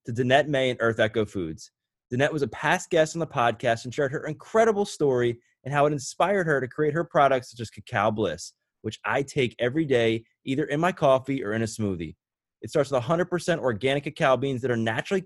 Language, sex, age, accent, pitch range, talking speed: English, male, 20-39, American, 125-160 Hz, 220 wpm